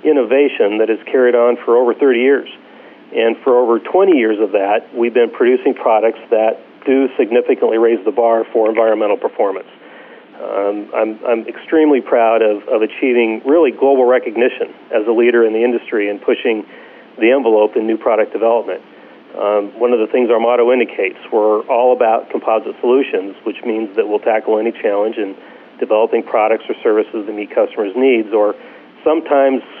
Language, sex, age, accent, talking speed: English, male, 40-59, American, 170 wpm